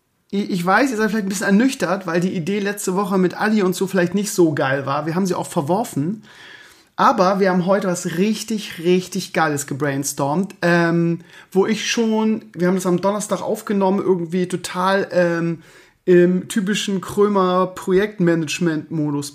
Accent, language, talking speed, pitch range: German, German, 160 wpm, 170-200 Hz